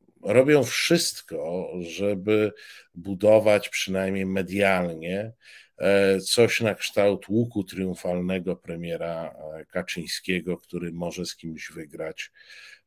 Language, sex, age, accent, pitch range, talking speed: Polish, male, 50-69, native, 90-110 Hz, 85 wpm